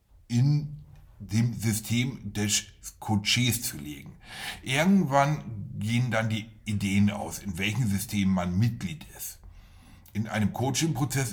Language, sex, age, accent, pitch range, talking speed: German, male, 60-79, German, 95-110 Hz, 115 wpm